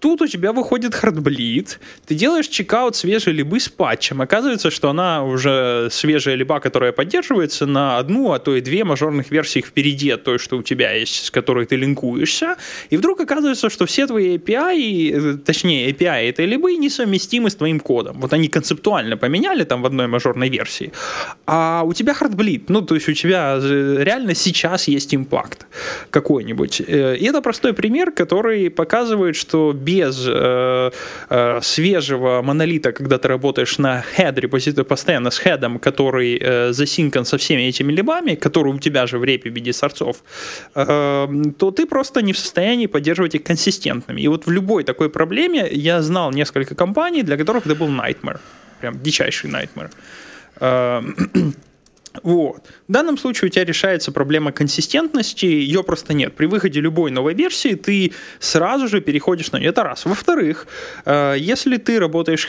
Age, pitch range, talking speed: 20-39, 140-215 Hz, 165 wpm